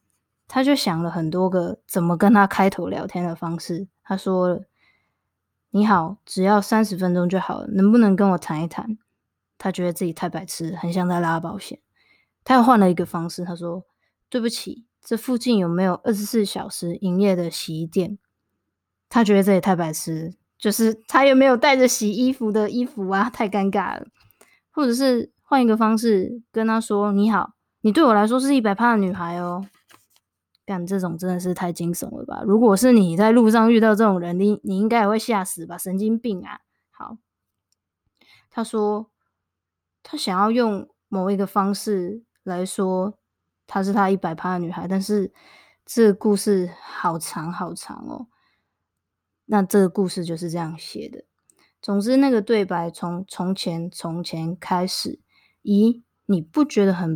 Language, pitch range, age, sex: Chinese, 175-220 Hz, 20-39, female